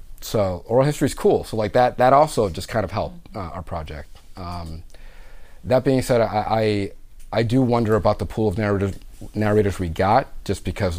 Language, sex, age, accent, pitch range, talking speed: English, male, 30-49, American, 85-105 Hz, 195 wpm